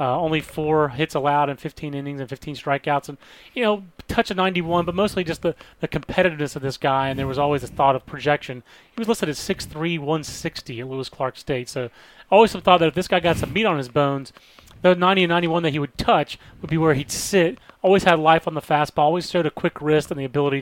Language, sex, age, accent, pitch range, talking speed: English, male, 30-49, American, 140-170 Hz, 245 wpm